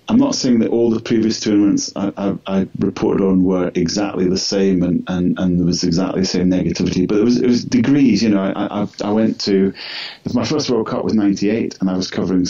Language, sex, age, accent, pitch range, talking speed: English, male, 30-49, British, 90-100 Hz, 235 wpm